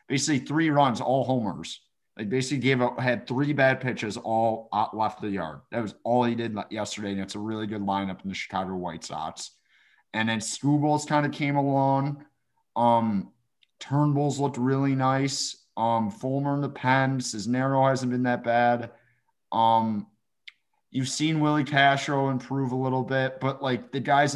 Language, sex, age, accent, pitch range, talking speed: English, male, 30-49, American, 110-130 Hz, 175 wpm